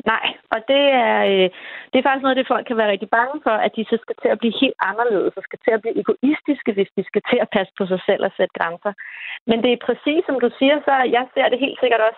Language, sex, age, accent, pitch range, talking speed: Danish, female, 30-49, native, 205-260 Hz, 280 wpm